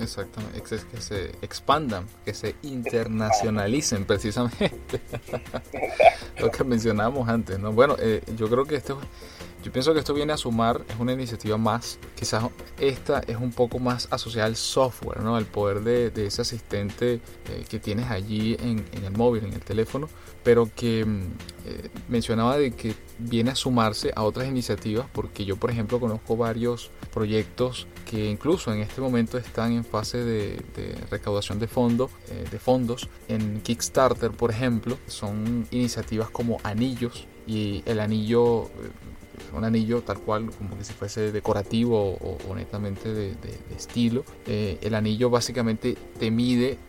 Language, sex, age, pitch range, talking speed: Spanish, male, 20-39, 105-120 Hz, 160 wpm